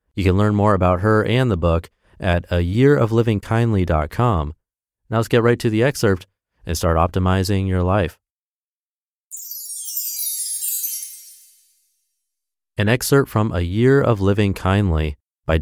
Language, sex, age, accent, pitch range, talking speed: English, male, 30-49, American, 85-115 Hz, 125 wpm